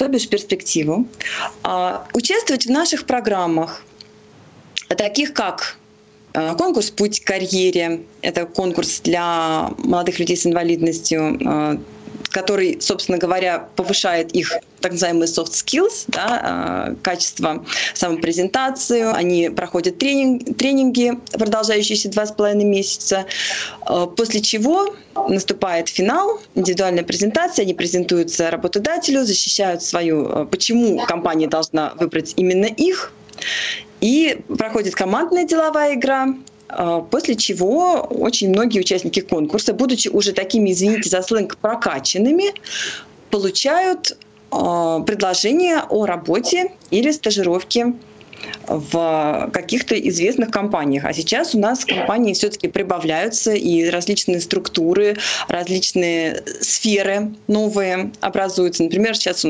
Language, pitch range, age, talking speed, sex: Russian, 170-235 Hz, 20-39, 100 wpm, female